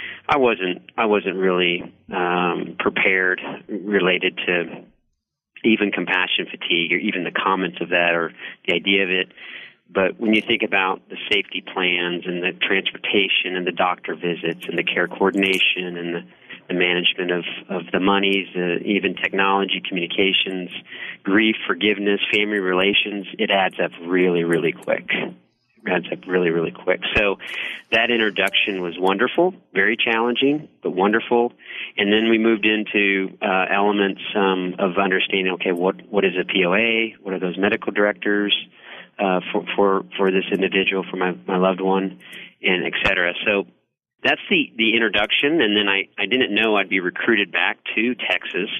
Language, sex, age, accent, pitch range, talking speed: English, male, 40-59, American, 90-105 Hz, 160 wpm